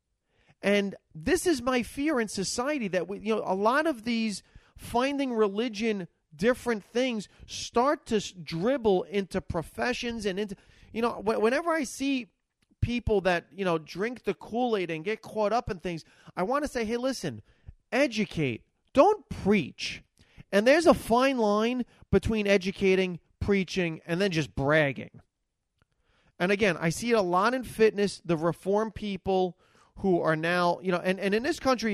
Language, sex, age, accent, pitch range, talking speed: English, male, 30-49, American, 160-215 Hz, 165 wpm